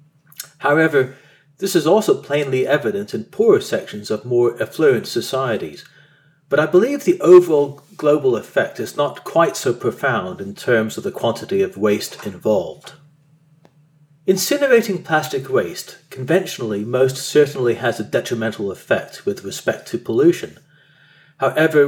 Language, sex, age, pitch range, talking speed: English, male, 40-59, 125-170 Hz, 130 wpm